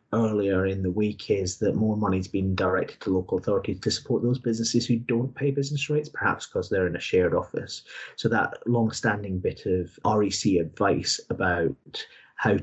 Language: English